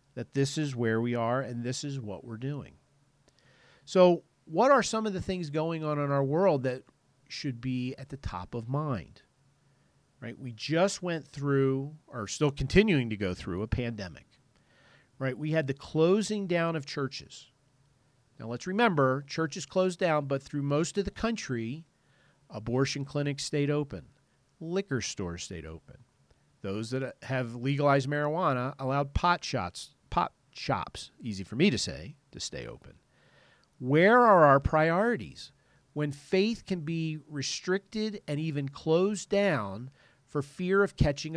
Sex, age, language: male, 40-59, English